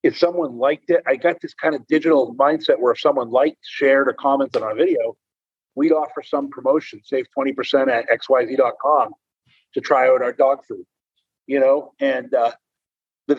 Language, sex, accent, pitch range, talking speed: English, male, American, 135-175 Hz, 180 wpm